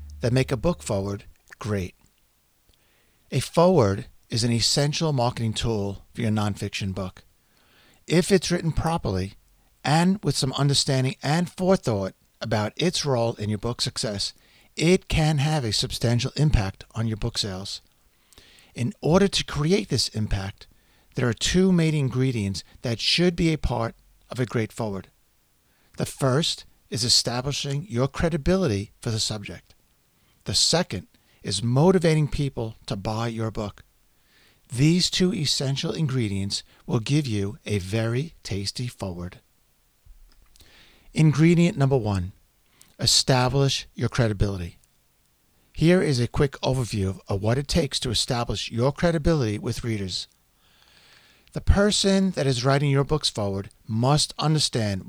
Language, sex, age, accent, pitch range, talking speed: English, male, 50-69, American, 105-150 Hz, 135 wpm